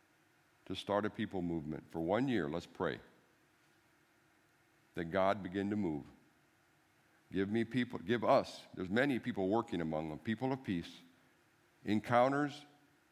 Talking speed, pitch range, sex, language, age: 135 wpm, 85-115 Hz, male, English, 60-79